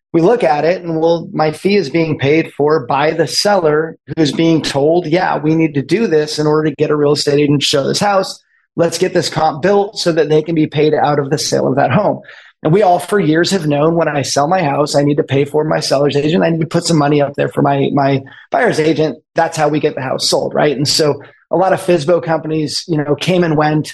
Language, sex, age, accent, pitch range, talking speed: English, male, 30-49, American, 150-180 Hz, 270 wpm